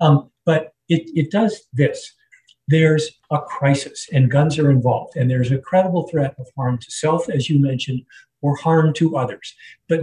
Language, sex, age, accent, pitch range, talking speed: English, male, 50-69, American, 125-155 Hz, 180 wpm